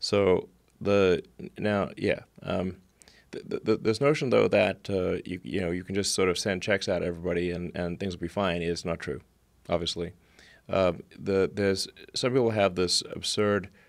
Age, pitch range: 30-49, 85-100 Hz